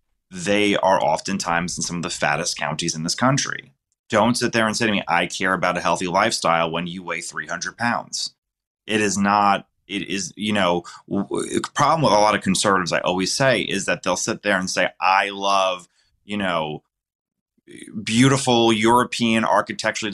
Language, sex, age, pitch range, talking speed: English, male, 30-49, 90-115 Hz, 190 wpm